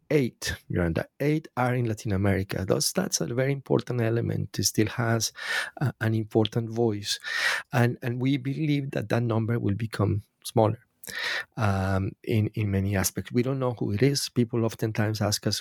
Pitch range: 105-125 Hz